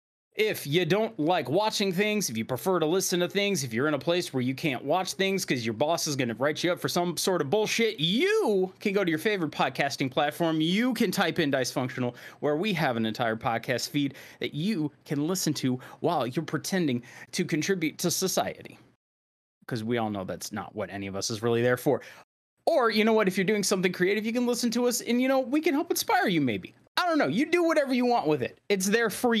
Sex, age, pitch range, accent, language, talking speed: male, 30-49, 130-210 Hz, American, English, 245 wpm